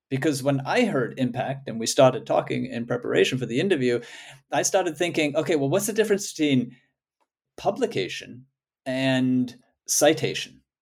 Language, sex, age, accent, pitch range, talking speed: English, male, 40-59, American, 125-155 Hz, 145 wpm